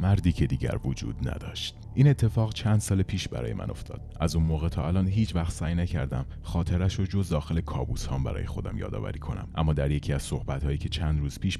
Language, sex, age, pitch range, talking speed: Persian, male, 30-49, 70-95 Hz, 215 wpm